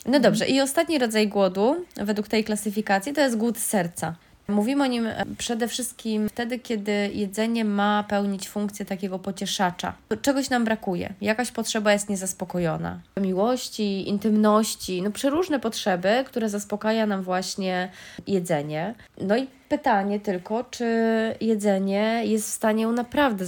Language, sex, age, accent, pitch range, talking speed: Polish, female, 20-39, native, 190-235 Hz, 140 wpm